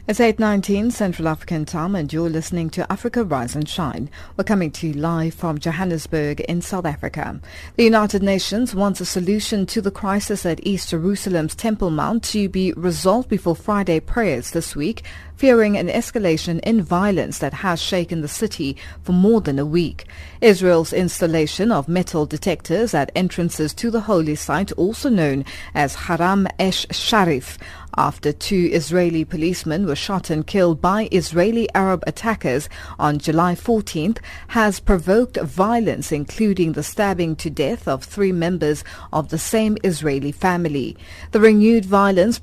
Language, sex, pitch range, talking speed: English, female, 160-205 Hz, 155 wpm